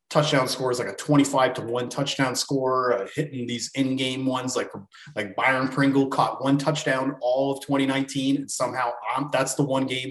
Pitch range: 125-150 Hz